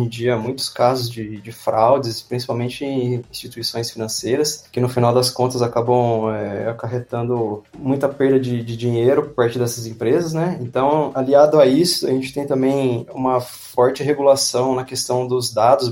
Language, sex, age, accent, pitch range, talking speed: Portuguese, male, 20-39, Brazilian, 115-135 Hz, 160 wpm